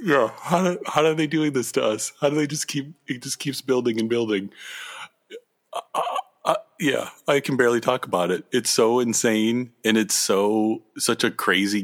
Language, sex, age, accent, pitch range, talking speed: English, male, 30-49, American, 100-135 Hz, 205 wpm